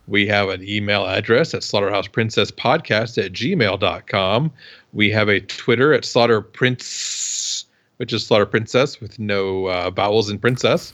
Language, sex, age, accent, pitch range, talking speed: English, male, 40-59, American, 105-120 Hz, 135 wpm